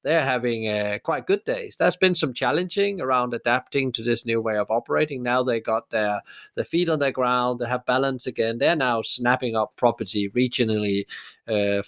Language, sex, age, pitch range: English, male, 30-49, 110-130 Hz